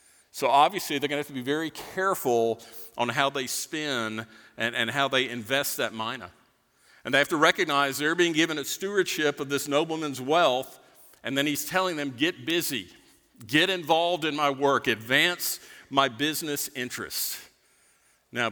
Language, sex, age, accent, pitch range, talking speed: English, male, 50-69, American, 125-160 Hz, 170 wpm